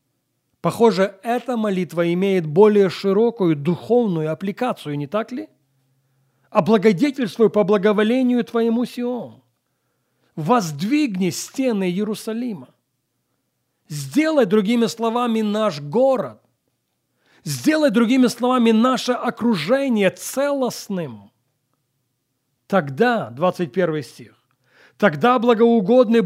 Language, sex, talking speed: Russian, male, 80 wpm